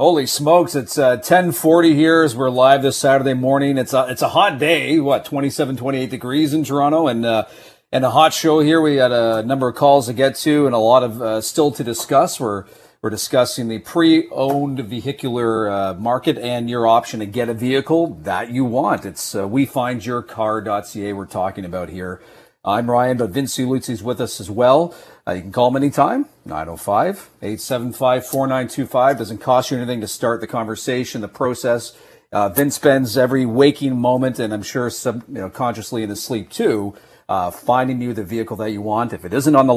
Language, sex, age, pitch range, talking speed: English, male, 40-59, 110-135 Hz, 195 wpm